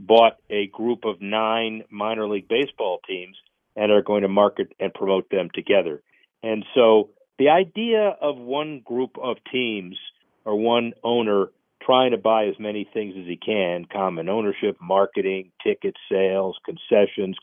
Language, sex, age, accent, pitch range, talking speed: English, male, 50-69, American, 100-120 Hz, 155 wpm